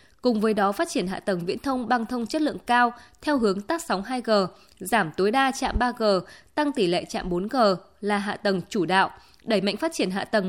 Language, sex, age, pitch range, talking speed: Vietnamese, female, 20-39, 195-265 Hz, 230 wpm